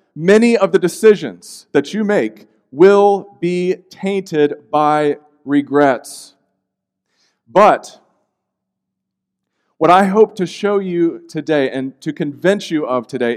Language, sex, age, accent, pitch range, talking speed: English, male, 40-59, American, 120-190 Hz, 115 wpm